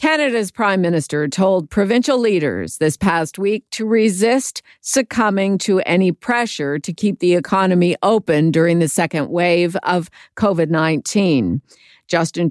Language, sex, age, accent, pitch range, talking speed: English, female, 50-69, American, 160-205 Hz, 130 wpm